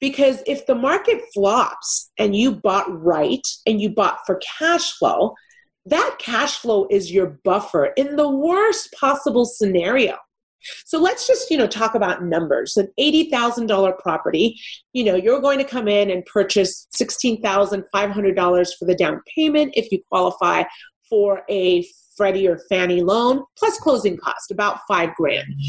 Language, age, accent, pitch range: English, 40-59, American, 200-295 Hz